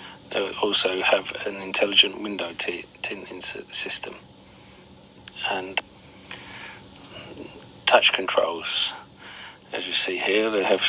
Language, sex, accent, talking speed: English, male, British, 100 wpm